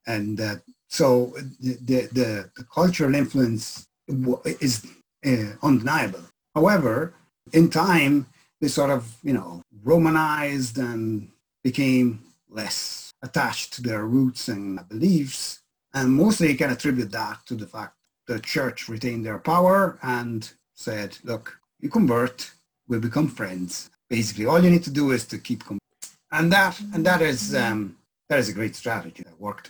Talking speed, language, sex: 155 wpm, English, male